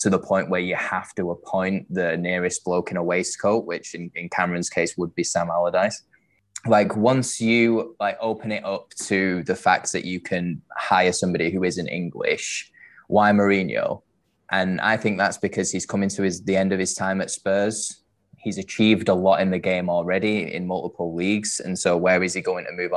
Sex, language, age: male, English, 10-29